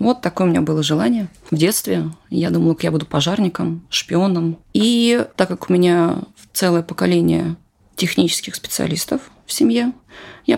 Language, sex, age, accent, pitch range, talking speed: Russian, female, 20-39, native, 165-215 Hz, 155 wpm